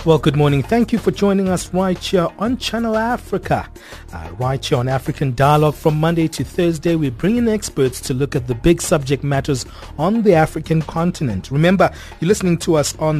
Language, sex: English, male